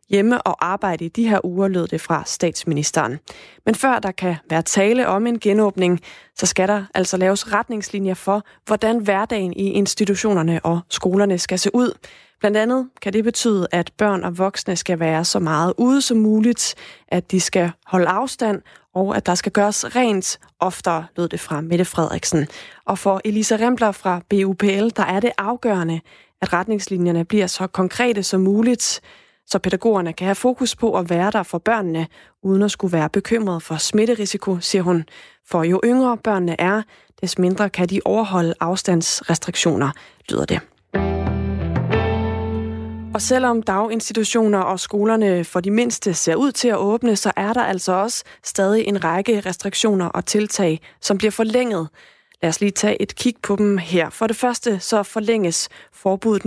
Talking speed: 170 wpm